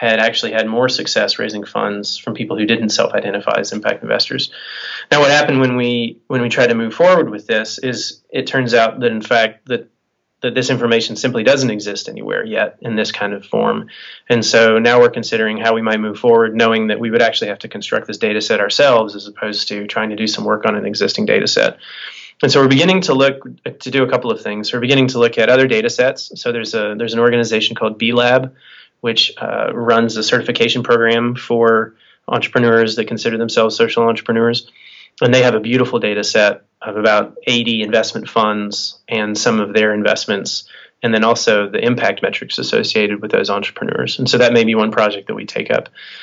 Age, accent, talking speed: 20-39, American, 215 wpm